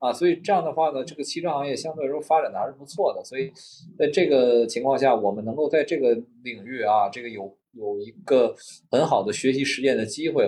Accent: native